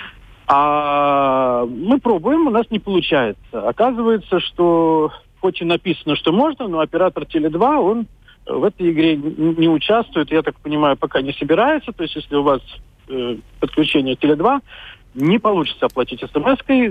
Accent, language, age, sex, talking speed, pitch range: native, Russian, 50-69, male, 145 wpm, 135-205 Hz